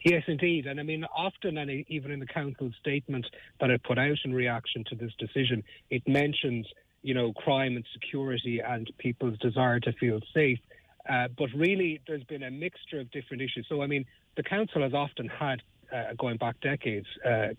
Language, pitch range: English, 120-145 Hz